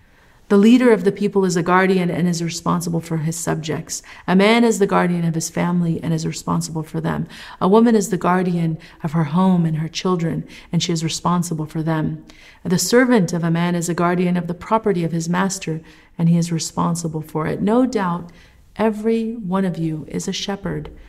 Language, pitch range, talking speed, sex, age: English, 165-200 Hz, 210 wpm, female, 40-59